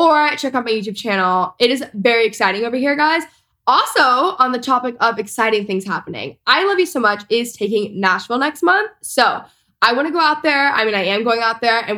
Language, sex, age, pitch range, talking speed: English, female, 10-29, 205-275 Hz, 230 wpm